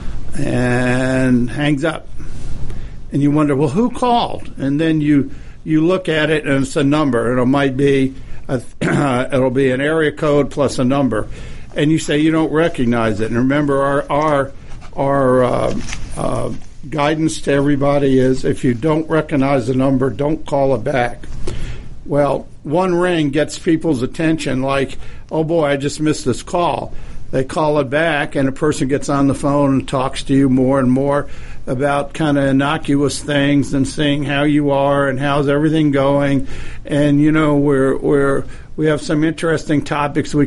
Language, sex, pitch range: English, male, 135-150 Hz